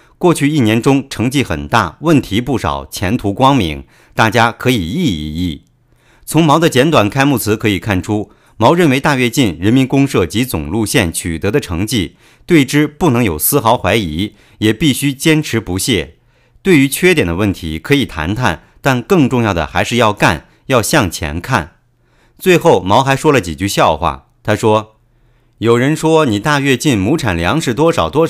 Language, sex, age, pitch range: English, male, 50-69, 105-150 Hz